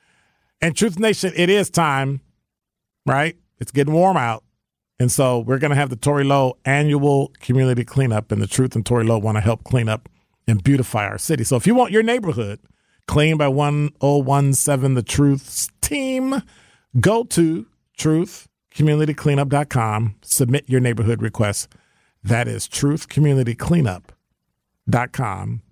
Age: 40-59